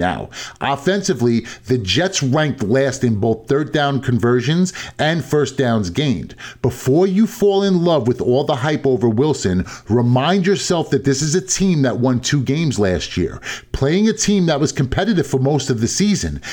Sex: male